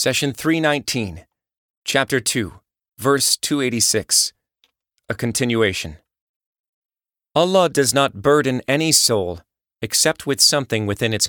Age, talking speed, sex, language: 30-49, 100 wpm, male, English